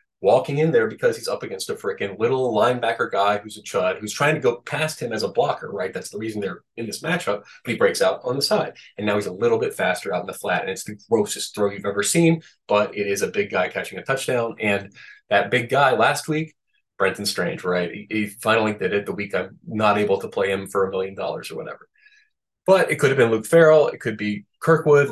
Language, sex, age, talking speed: English, male, 30-49, 255 wpm